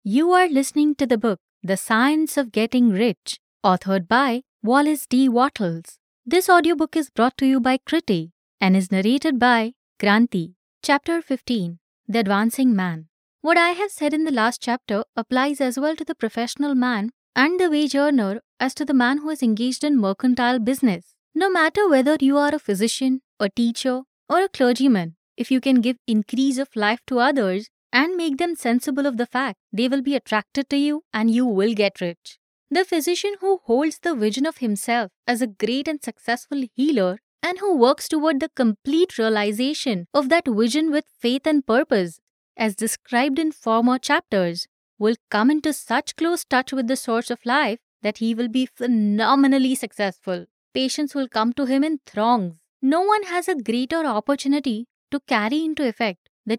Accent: Indian